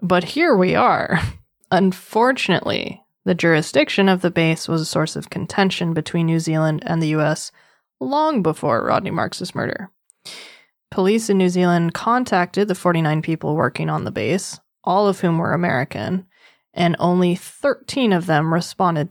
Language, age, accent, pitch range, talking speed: English, 20-39, American, 160-200 Hz, 155 wpm